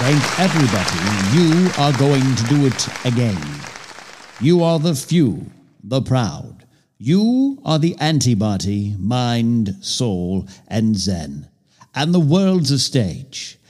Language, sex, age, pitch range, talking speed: English, male, 60-79, 115-155 Hz, 125 wpm